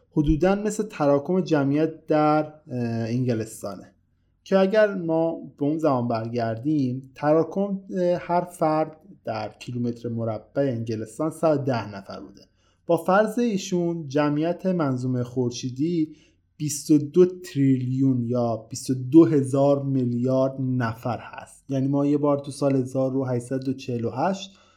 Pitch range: 115-150 Hz